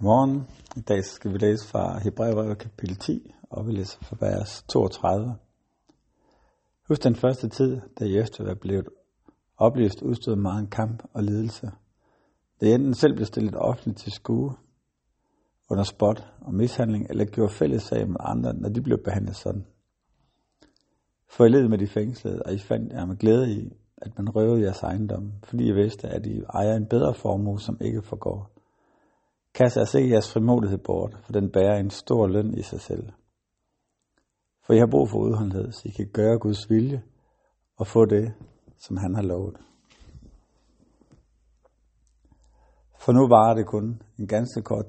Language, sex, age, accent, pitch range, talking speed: Danish, male, 60-79, native, 100-115 Hz, 165 wpm